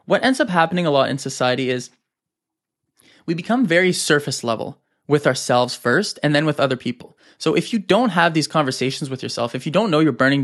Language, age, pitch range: English, 20-39, 125-165 Hz